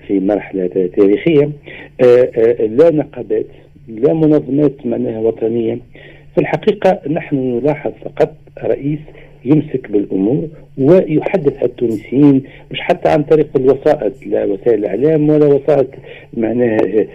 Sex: male